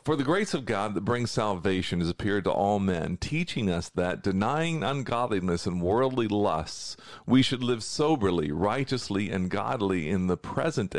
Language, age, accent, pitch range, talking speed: English, 50-69, American, 95-135 Hz, 170 wpm